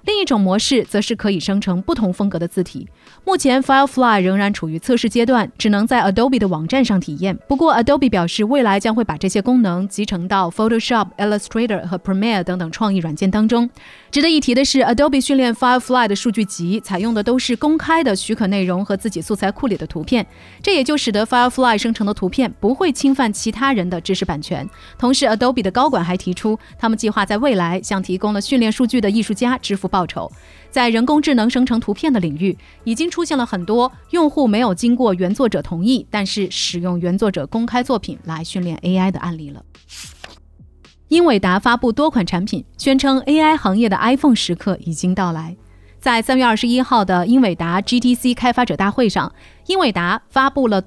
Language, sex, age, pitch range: Chinese, female, 30-49, 190-250 Hz